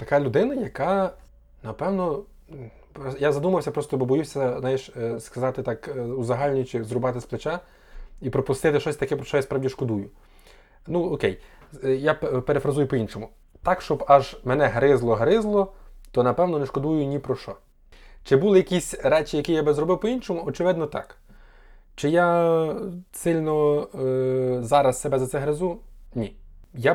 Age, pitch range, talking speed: 20-39, 120-150 Hz, 140 wpm